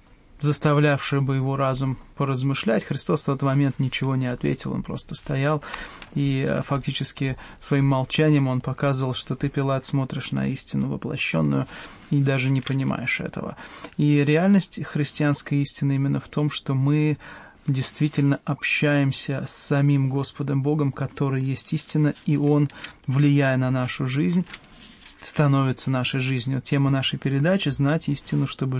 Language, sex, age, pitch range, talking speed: English, male, 30-49, 130-145 Hz, 140 wpm